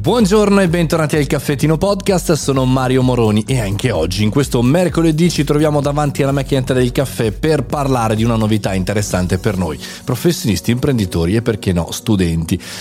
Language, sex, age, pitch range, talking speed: Italian, male, 30-49, 105-145 Hz, 170 wpm